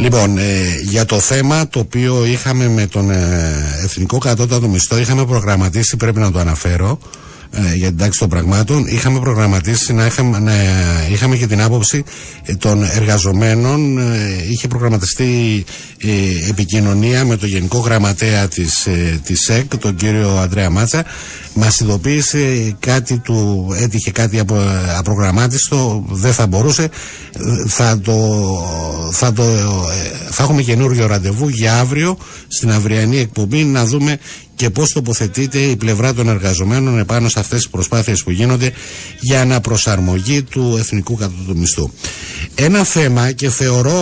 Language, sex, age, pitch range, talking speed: Greek, male, 60-79, 95-125 Hz, 135 wpm